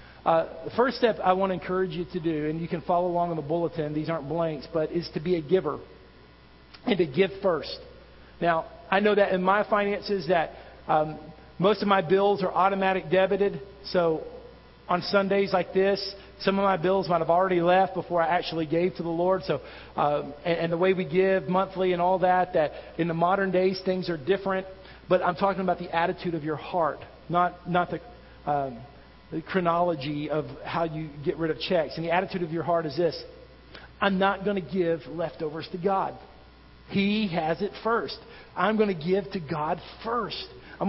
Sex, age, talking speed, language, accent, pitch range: male, 40-59, 205 wpm, English, American, 165-195 Hz